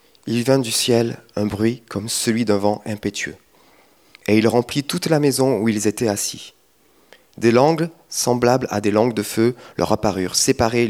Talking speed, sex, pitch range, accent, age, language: 175 wpm, male, 105-135 Hz, French, 30-49, French